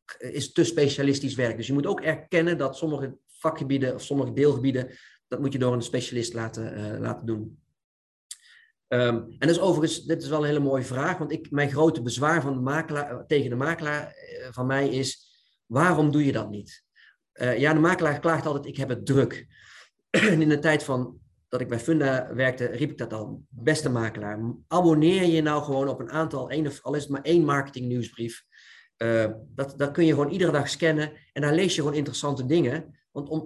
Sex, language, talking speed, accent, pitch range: male, Dutch, 210 wpm, Dutch, 125-160 Hz